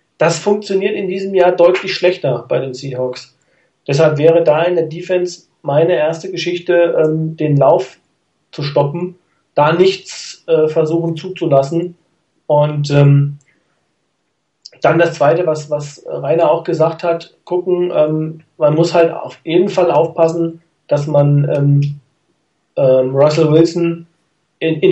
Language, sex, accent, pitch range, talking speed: German, male, German, 145-170 Hz, 120 wpm